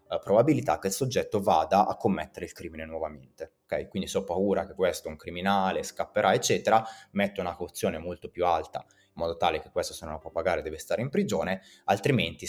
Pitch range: 90-125 Hz